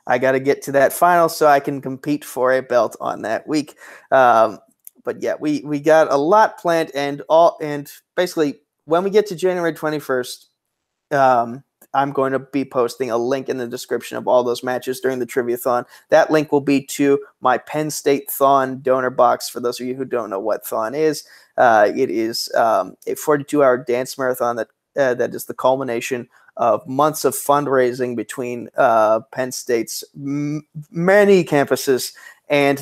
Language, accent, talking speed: English, American, 185 wpm